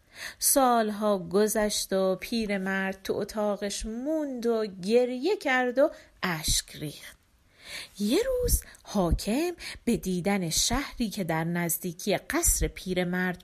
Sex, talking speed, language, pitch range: female, 110 wpm, Persian, 180-285 Hz